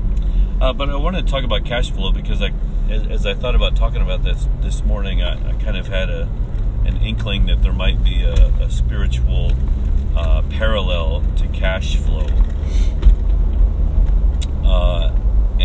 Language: English